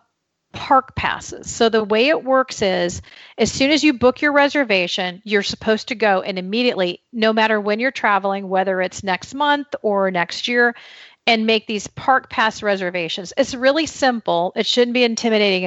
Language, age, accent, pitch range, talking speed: English, 40-59, American, 180-225 Hz, 175 wpm